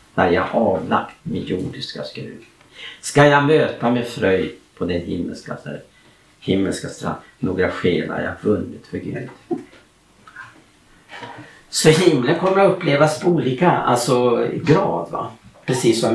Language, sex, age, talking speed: Swedish, male, 60-79, 125 wpm